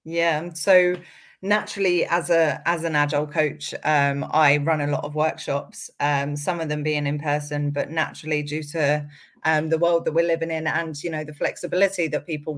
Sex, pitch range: female, 145-165 Hz